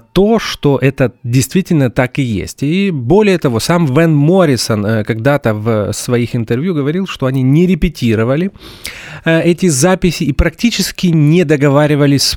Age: 30-49